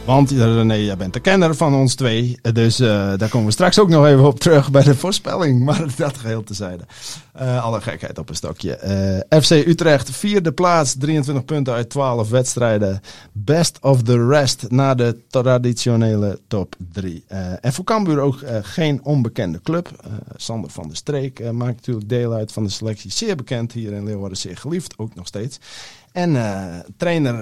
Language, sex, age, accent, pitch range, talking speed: Dutch, male, 50-69, Dutch, 110-145 Hz, 190 wpm